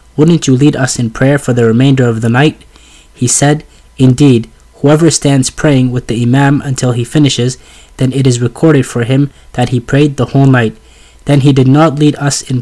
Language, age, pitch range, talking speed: English, 20-39, 125-145 Hz, 205 wpm